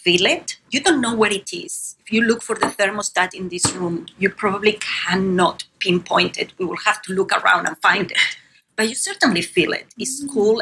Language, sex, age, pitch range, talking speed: English, female, 30-49, 180-215 Hz, 215 wpm